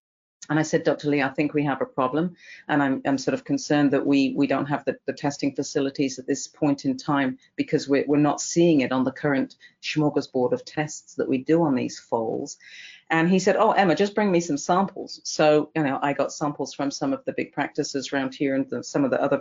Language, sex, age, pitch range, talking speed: English, female, 40-59, 135-155 Hz, 245 wpm